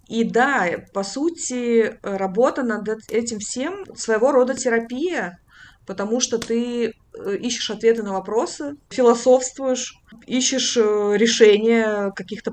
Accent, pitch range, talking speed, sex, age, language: native, 210-250 Hz, 105 wpm, female, 20-39, Russian